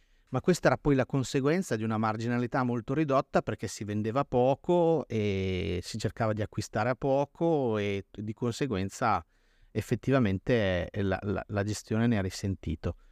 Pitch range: 95-120 Hz